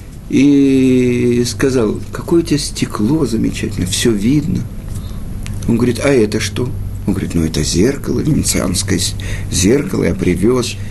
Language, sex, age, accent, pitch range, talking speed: Russian, male, 50-69, native, 100-155 Hz, 125 wpm